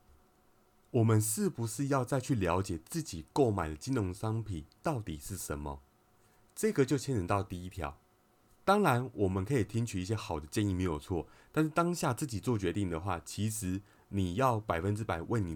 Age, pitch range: 30-49, 95-125 Hz